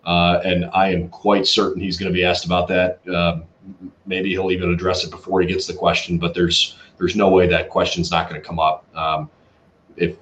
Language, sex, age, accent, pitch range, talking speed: English, male, 30-49, American, 85-115 Hz, 225 wpm